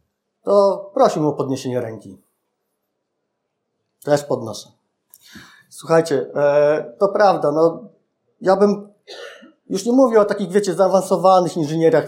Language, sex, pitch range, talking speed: Polish, male, 135-175 Hz, 110 wpm